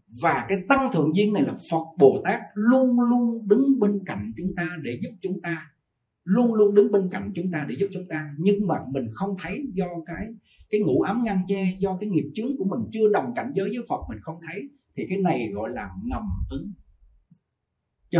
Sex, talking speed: male, 220 wpm